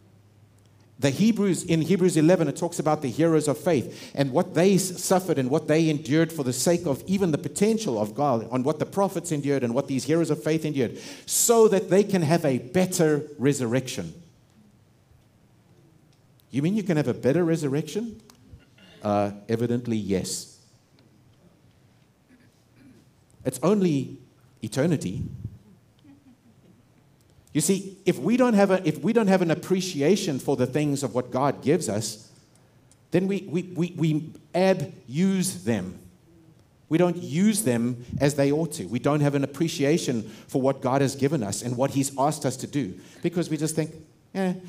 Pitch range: 125-170 Hz